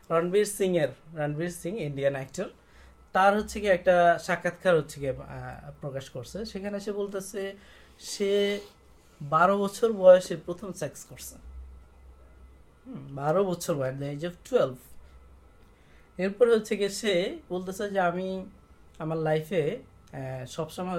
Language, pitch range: Bengali, 155-205 Hz